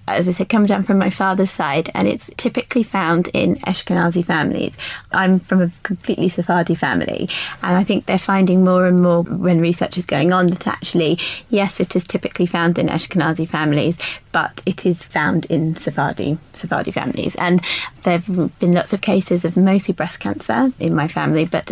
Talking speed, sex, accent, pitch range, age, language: 190 wpm, female, British, 170-190 Hz, 20-39, English